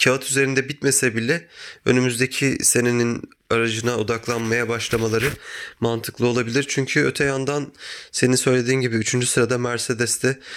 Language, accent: Turkish, native